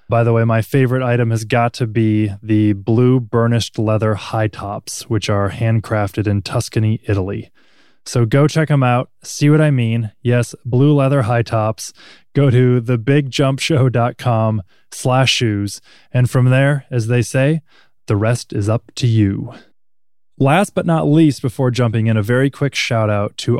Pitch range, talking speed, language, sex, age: 105-130 Hz, 165 wpm, English, male, 20-39